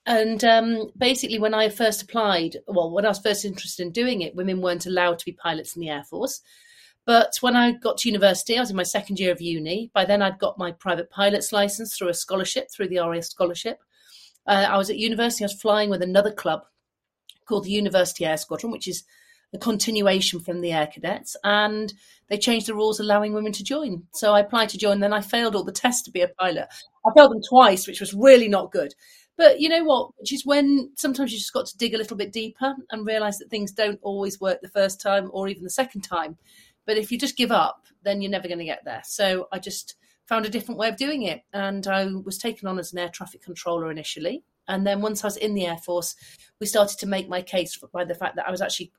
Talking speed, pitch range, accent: 245 wpm, 180-225 Hz, British